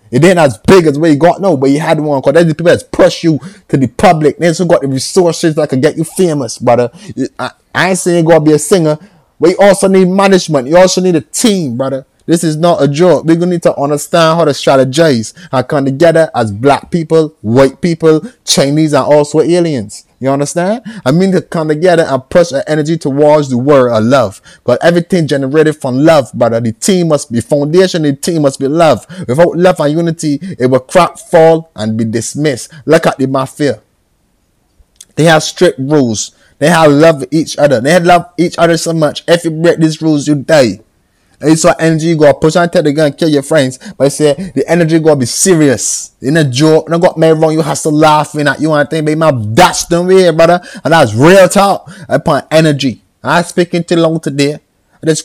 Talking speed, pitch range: 230 wpm, 140-170 Hz